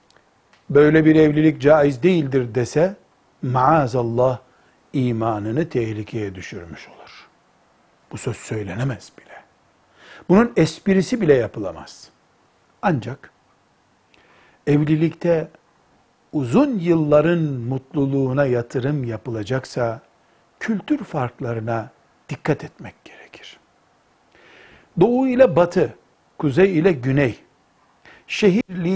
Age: 60-79